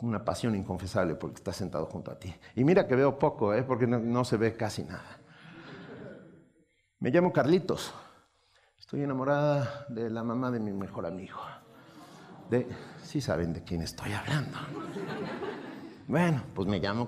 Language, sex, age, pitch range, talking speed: Spanish, male, 50-69, 100-130 Hz, 160 wpm